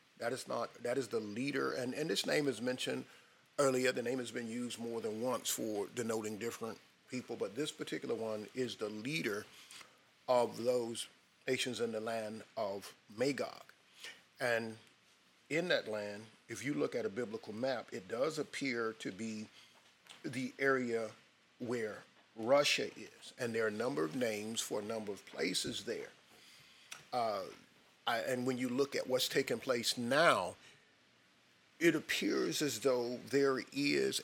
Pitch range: 110-125 Hz